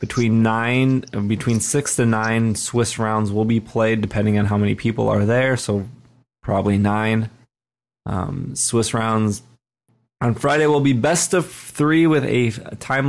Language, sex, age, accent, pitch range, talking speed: English, male, 20-39, American, 100-120 Hz, 155 wpm